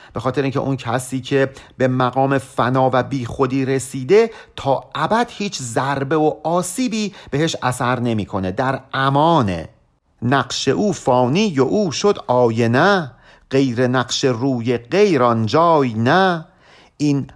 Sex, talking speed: male, 135 wpm